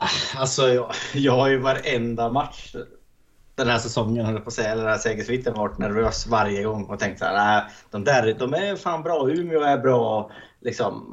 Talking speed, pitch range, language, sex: 195 wpm, 110-125 Hz, Swedish, male